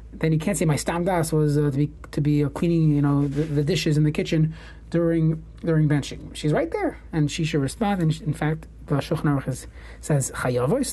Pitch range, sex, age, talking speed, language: 145-170 Hz, male, 30-49, 230 wpm, English